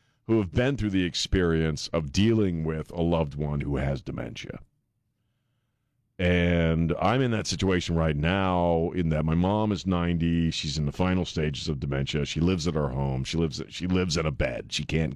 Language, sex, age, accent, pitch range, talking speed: English, male, 40-59, American, 80-110 Hz, 195 wpm